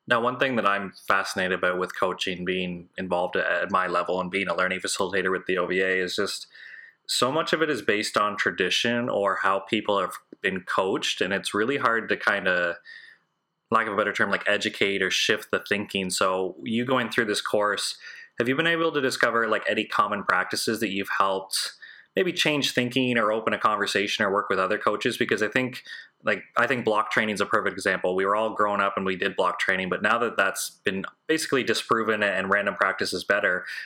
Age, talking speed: 20-39, 215 wpm